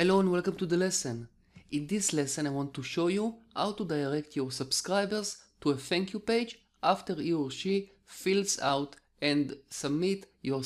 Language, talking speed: English, 185 wpm